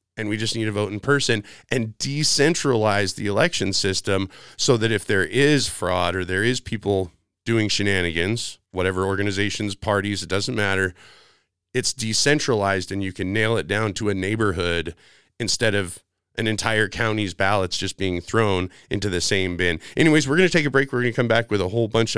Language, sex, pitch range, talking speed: English, male, 95-115 Hz, 190 wpm